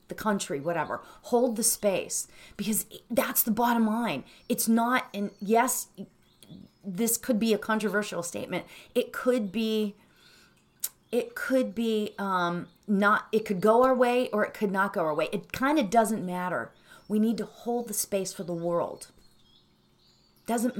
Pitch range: 175-230 Hz